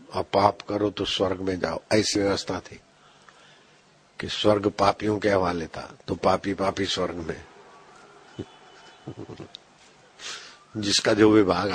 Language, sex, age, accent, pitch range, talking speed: Hindi, male, 50-69, native, 100-110 Hz, 125 wpm